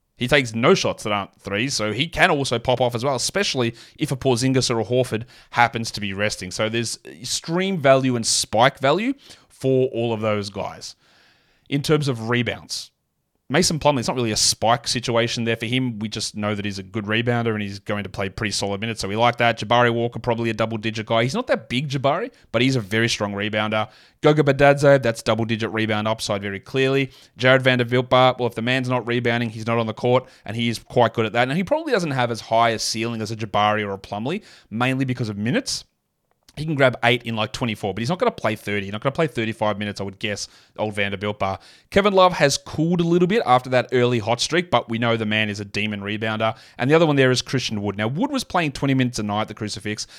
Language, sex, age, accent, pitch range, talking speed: English, male, 20-39, Australian, 110-135 Hz, 245 wpm